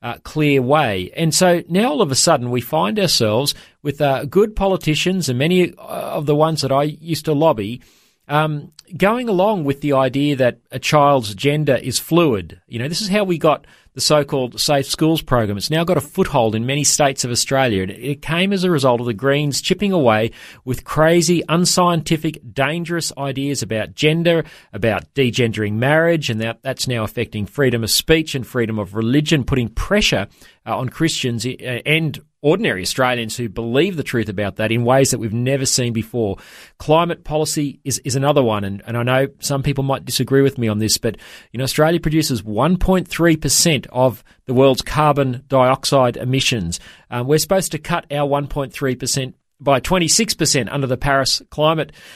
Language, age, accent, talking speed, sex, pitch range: English, 40-59, Australian, 185 wpm, male, 125-160 Hz